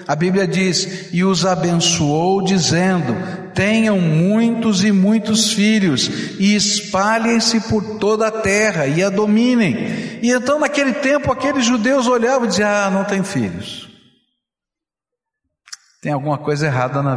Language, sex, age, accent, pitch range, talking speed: Portuguese, male, 60-79, Brazilian, 155-225 Hz, 135 wpm